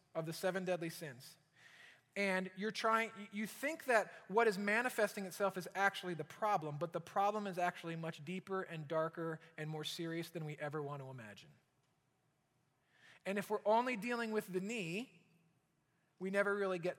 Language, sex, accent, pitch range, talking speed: English, male, American, 160-210 Hz, 175 wpm